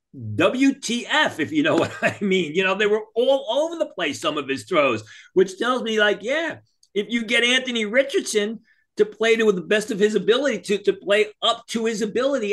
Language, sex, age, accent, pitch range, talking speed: English, male, 40-59, American, 170-230 Hz, 215 wpm